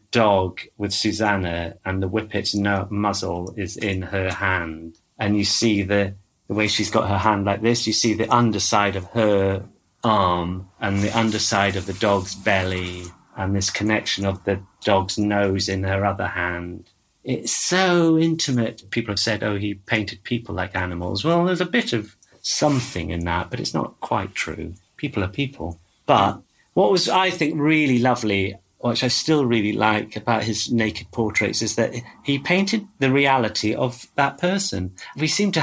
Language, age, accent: Italian, 30-49, British